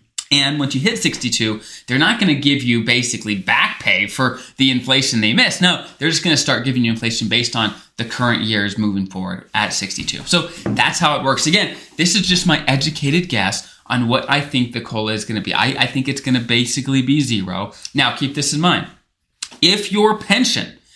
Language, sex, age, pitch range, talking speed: English, male, 20-39, 120-170 Hz, 220 wpm